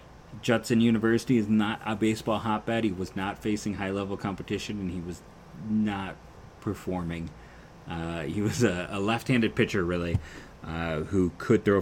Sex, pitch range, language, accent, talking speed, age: male, 80-95 Hz, English, American, 155 wpm, 30-49